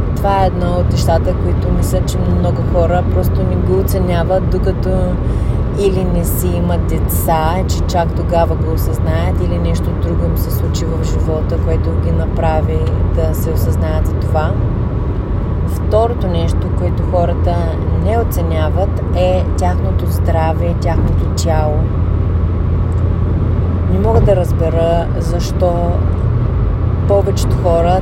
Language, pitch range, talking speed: English, 85-95 Hz, 125 wpm